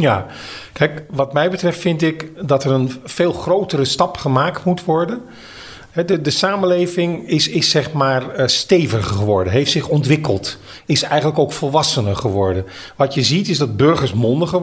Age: 40-59